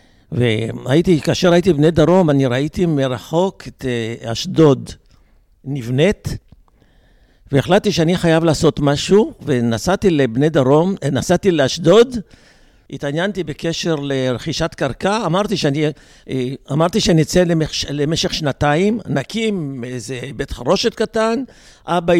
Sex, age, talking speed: male, 60-79, 105 wpm